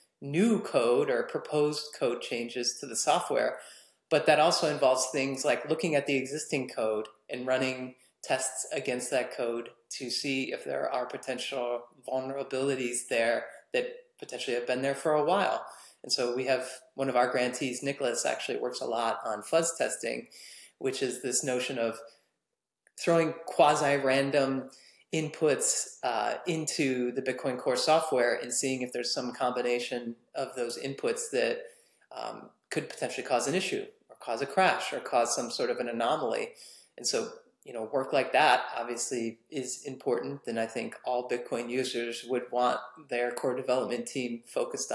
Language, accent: English, American